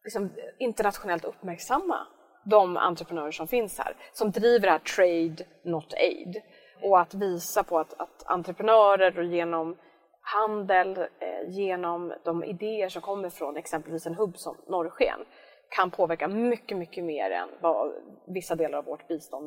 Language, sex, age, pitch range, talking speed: Swedish, female, 30-49, 175-245 Hz, 150 wpm